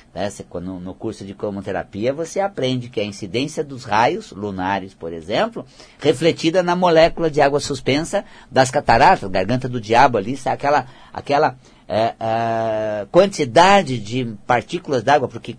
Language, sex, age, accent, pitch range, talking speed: Portuguese, male, 50-69, Brazilian, 125-195 Hz, 135 wpm